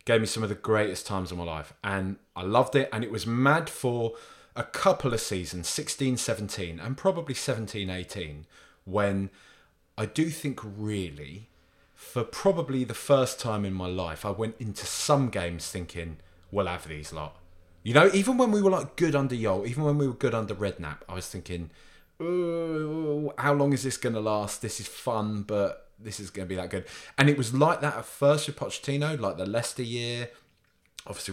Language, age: English, 20-39